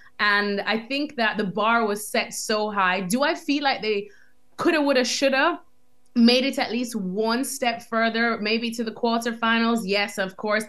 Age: 20-39